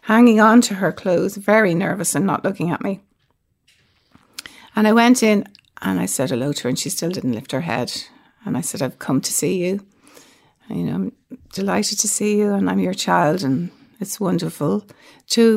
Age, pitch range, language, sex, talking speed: 60-79, 195-245 Hz, English, female, 205 wpm